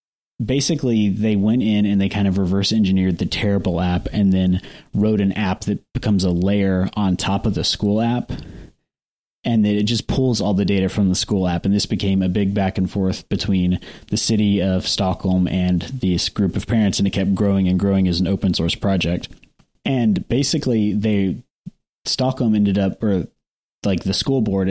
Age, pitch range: 30-49, 90-105 Hz